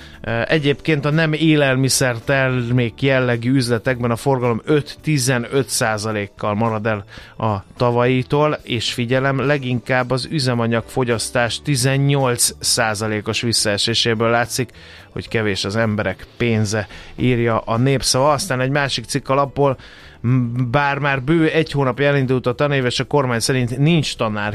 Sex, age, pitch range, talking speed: male, 30-49, 115-135 Hz, 115 wpm